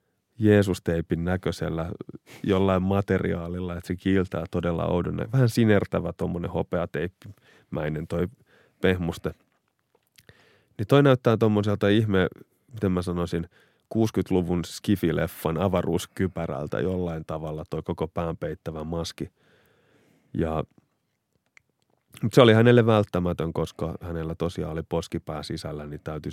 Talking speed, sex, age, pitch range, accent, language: 105 wpm, male, 30-49, 85-105 Hz, native, Finnish